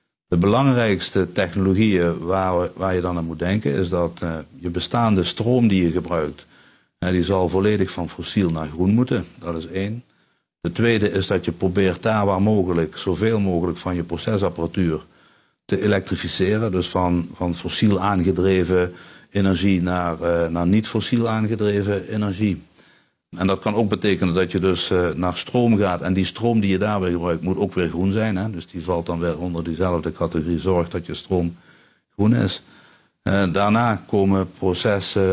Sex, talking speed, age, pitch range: male, 170 wpm, 60-79, 85-100 Hz